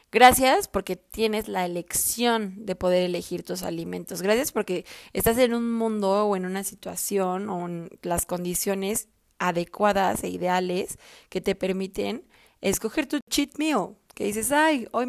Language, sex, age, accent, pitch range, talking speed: Spanish, female, 20-39, Mexican, 180-225 Hz, 150 wpm